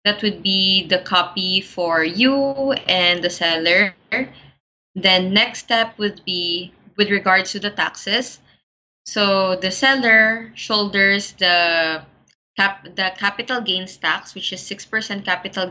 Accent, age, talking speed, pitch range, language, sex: Filipino, 20-39, 130 wpm, 170-205 Hz, English, female